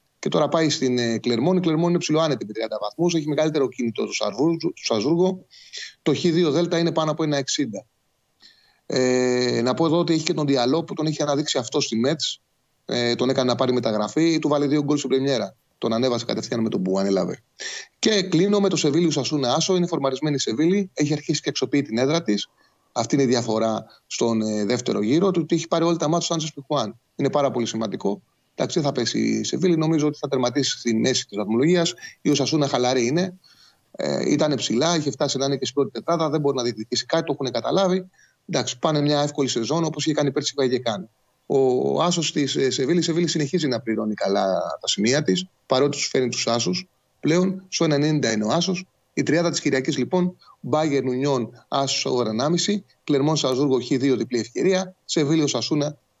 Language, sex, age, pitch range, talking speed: Greek, male, 30-49, 125-165 Hz, 135 wpm